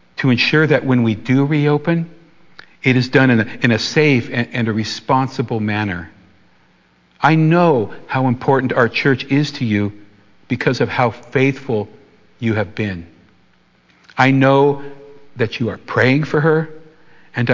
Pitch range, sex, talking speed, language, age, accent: 105-140 Hz, male, 150 wpm, English, 60-79, American